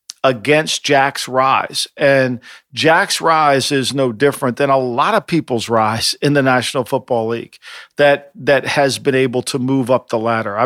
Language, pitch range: English, 130-155 Hz